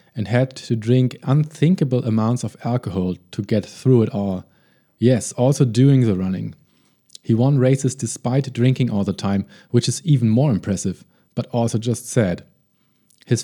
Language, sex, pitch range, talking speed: English, male, 110-135 Hz, 160 wpm